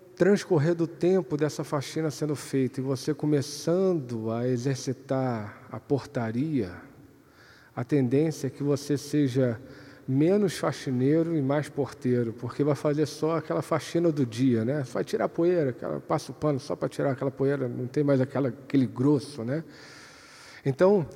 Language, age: Portuguese, 40-59